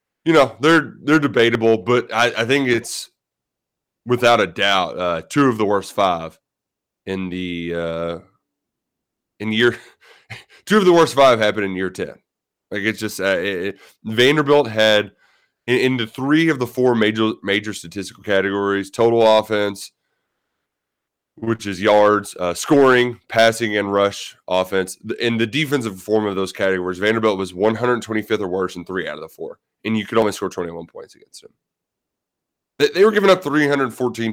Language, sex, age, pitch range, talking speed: English, male, 20-39, 100-140 Hz, 170 wpm